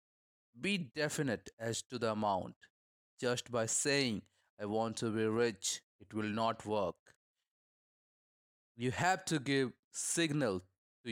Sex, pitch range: male, 110-145 Hz